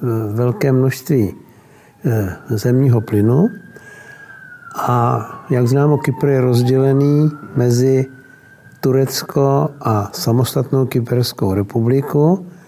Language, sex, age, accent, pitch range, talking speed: Czech, male, 60-79, native, 125-150 Hz, 75 wpm